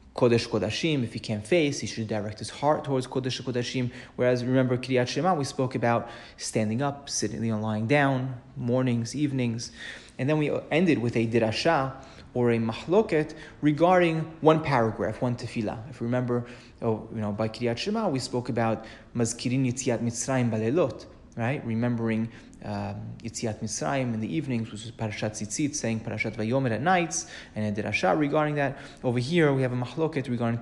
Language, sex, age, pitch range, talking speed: English, male, 30-49, 110-130 Hz, 170 wpm